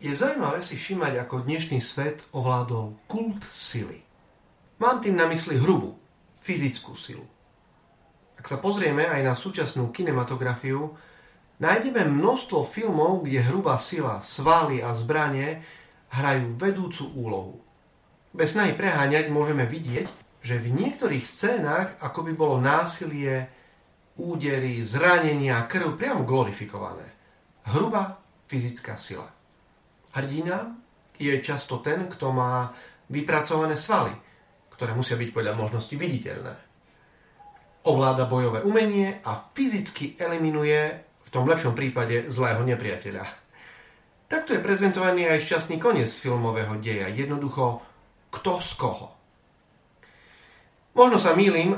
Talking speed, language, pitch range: 110 wpm, Slovak, 125-165 Hz